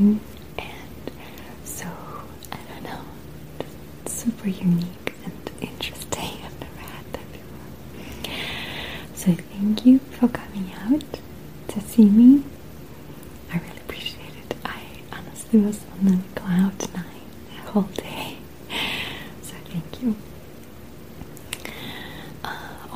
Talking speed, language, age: 110 wpm, English, 30-49